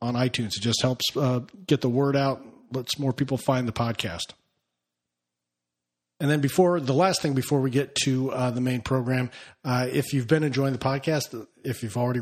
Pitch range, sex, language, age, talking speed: 115-145 Hz, male, English, 40-59, 195 wpm